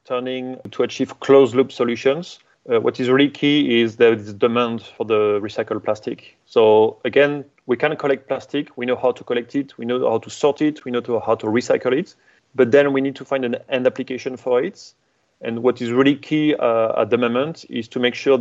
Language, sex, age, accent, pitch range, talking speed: English, male, 30-49, French, 115-135 Hz, 220 wpm